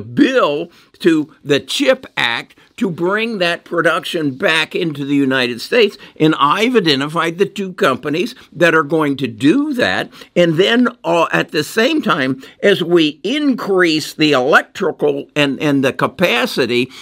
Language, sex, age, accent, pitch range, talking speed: English, male, 60-79, American, 150-215 Hz, 150 wpm